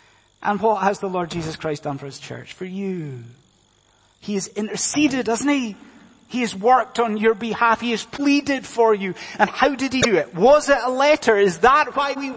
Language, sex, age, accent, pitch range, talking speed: English, male, 30-49, British, 145-220 Hz, 210 wpm